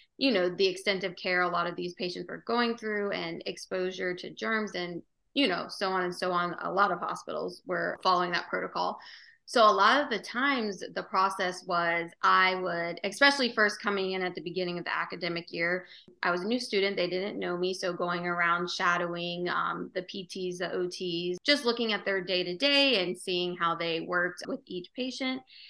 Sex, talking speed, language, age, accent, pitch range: female, 200 wpm, English, 20-39, American, 180-215 Hz